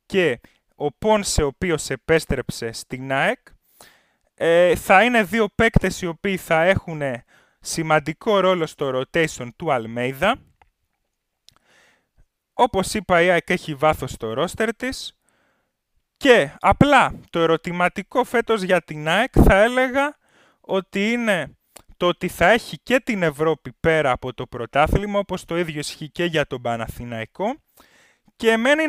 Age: 20-39